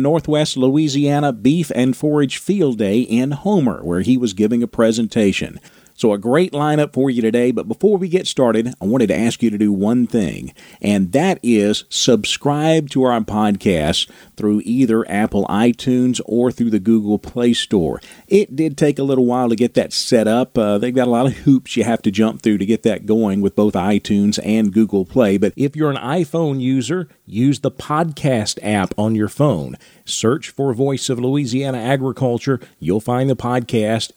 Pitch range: 110-140 Hz